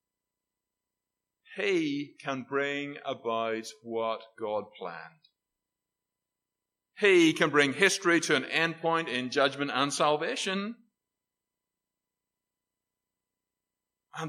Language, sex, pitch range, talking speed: English, male, 135-190 Hz, 85 wpm